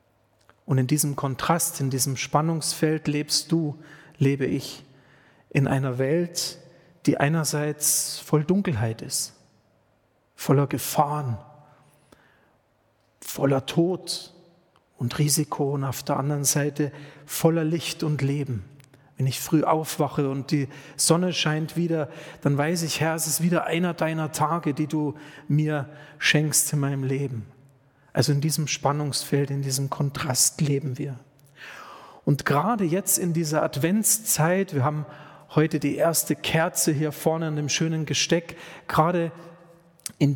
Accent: German